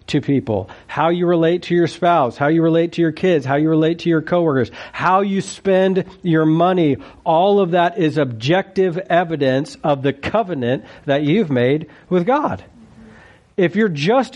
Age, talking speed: 40-59, 175 wpm